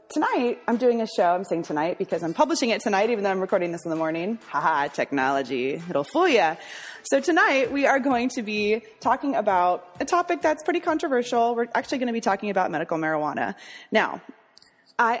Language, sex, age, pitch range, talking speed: English, female, 20-39, 170-240 Hz, 205 wpm